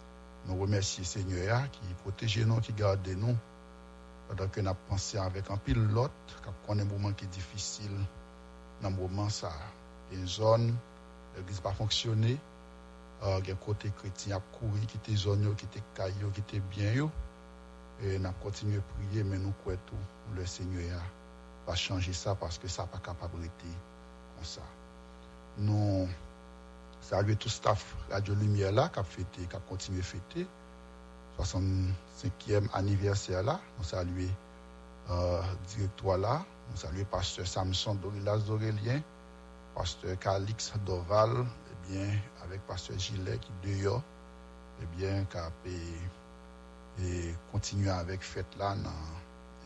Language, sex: English, male